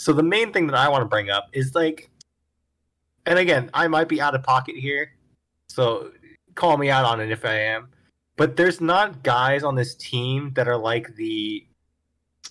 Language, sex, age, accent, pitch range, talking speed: English, male, 20-39, American, 120-145 Hz, 195 wpm